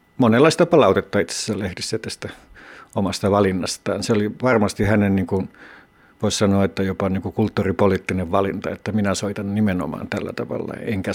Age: 60-79